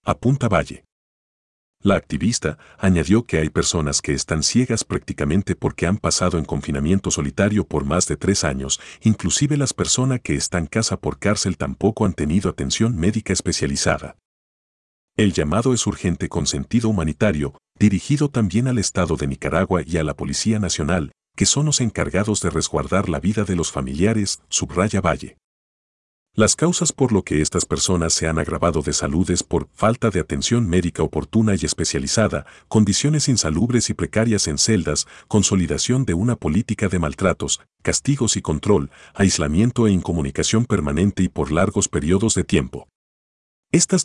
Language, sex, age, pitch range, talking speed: Spanish, male, 50-69, 80-110 Hz, 160 wpm